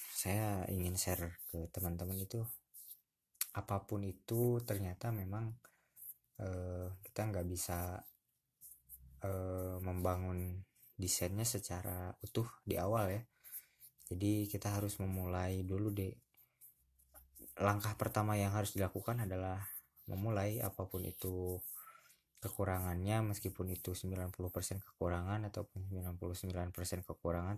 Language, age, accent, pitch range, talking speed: Indonesian, 20-39, native, 90-105 Hz, 100 wpm